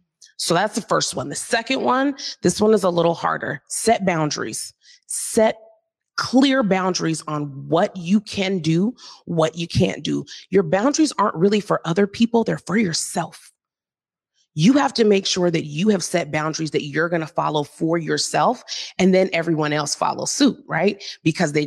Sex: female